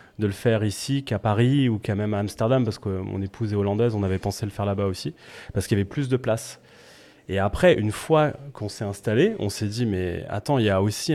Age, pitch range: 30-49, 100-120 Hz